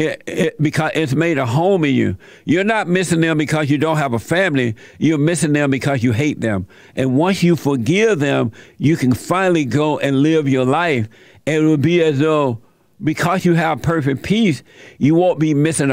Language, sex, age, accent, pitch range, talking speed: English, male, 60-79, American, 135-165 Hz, 205 wpm